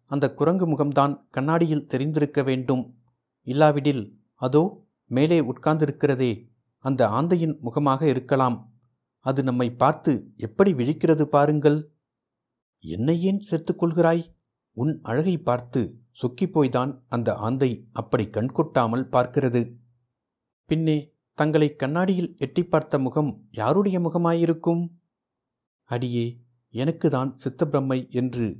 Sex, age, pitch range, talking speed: male, 50-69, 120-150 Hz, 90 wpm